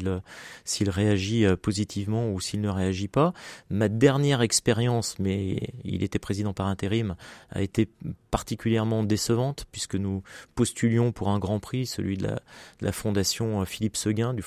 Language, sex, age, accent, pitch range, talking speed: French, male, 30-49, French, 100-115 Hz, 155 wpm